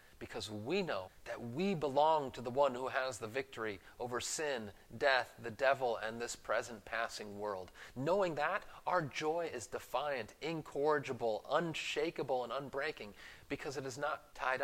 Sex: male